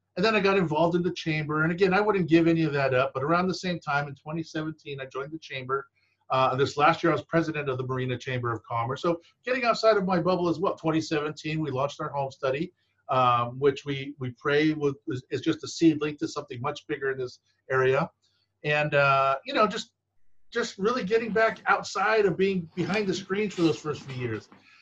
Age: 50-69